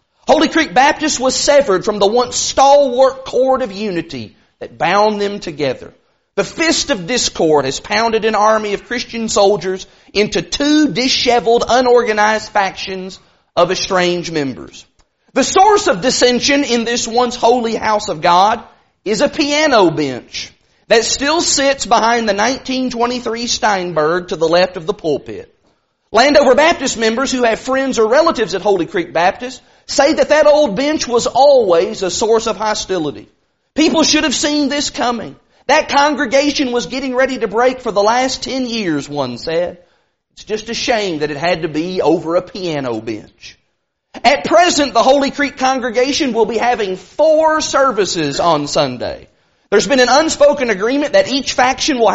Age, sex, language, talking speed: 40-59, male, English, 160 wpm